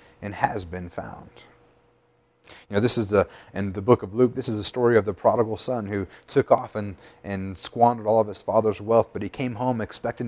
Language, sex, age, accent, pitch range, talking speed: English, male, 30-49, American, 100-125 Hz, 220 wpm